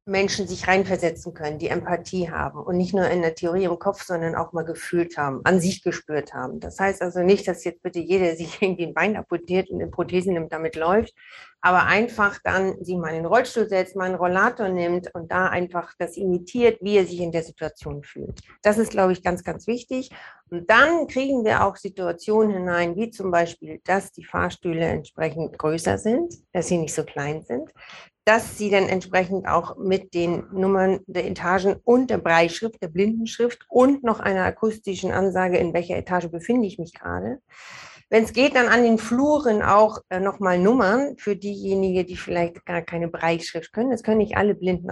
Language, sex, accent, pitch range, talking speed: German, female, German, 175-205 Hz, 200 wpm